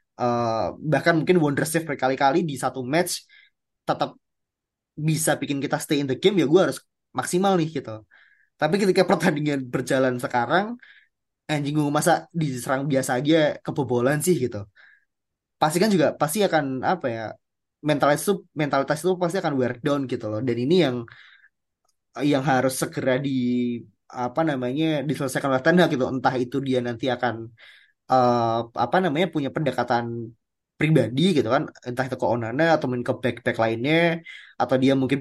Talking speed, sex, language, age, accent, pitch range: 150 wpm, male, Indonesian, 20-39, native, 125-165 Hz